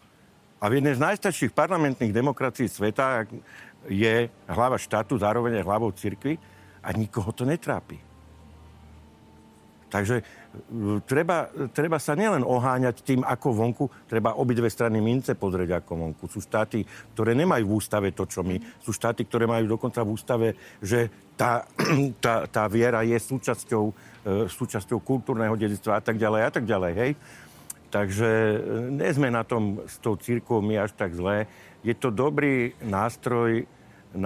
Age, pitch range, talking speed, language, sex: 60-79, 105-130 Hz, 140 wpm, Slovak, male